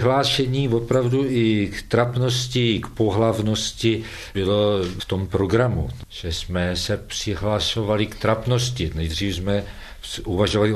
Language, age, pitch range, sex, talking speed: Czech, 50-69, 85-110 Hz, male, 110 wpm